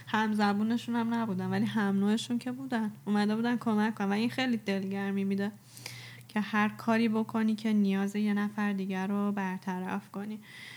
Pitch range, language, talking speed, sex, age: 200-235 Hz, Persian, 160 wpm, female, 10-29